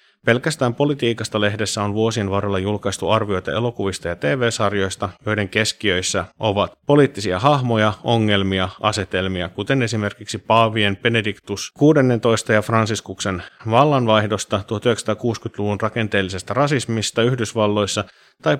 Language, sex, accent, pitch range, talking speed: Finnish, male, native, 100-120 Hz, 100 wpm